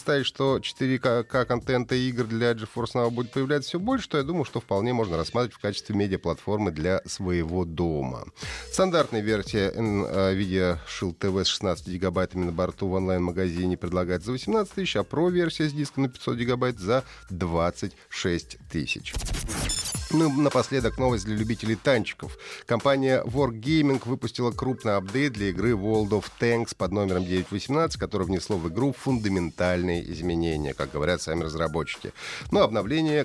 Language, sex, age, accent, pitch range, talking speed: Russian, male, 30-49, native, 95-130 Hz, 145 wpm